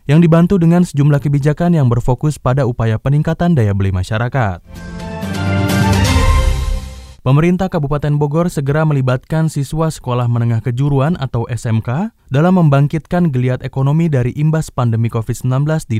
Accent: native